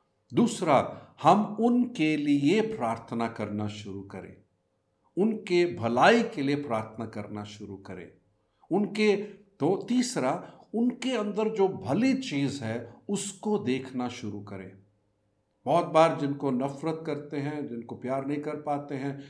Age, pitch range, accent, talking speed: 50-69, 105-165 Hz, native, 130 wpm